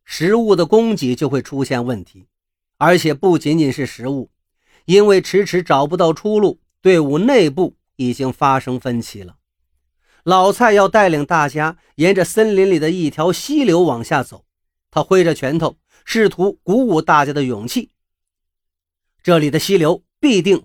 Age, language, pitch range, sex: 40-59, Chinese, 130-185 Hz, male